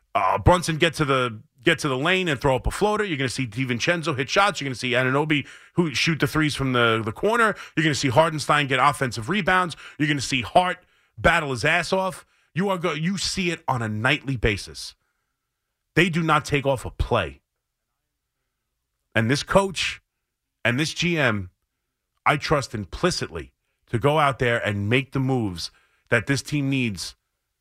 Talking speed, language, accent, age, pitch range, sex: 190 wpm, English, American, 30-49, 115-150 Hz, male